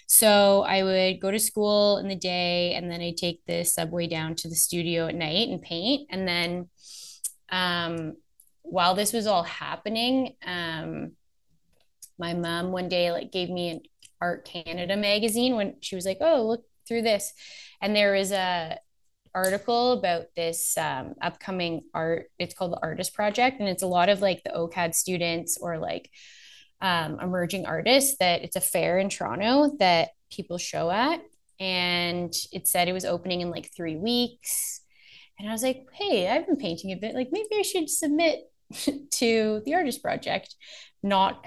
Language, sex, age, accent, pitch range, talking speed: English, female, 20-39, American, 175-220 Hz, 175 wpm